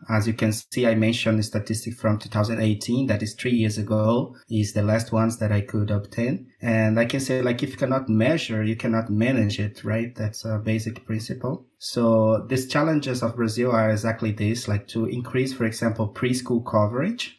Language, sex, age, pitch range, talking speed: English, male, 30-49, 110-125 Hz, 195 wpm